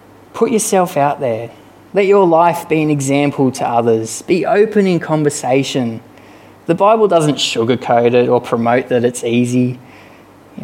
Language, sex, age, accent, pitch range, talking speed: English, male, 20-39, Australian, 120-155 Hz, 150 wpm